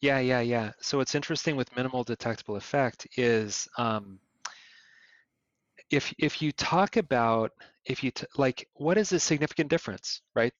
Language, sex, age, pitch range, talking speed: English, male, 30-49, 110-135 Hz, 155 wpm